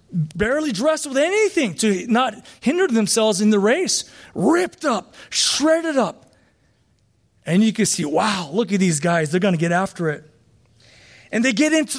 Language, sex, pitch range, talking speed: English, male, 235-320 Hz, 170 wpm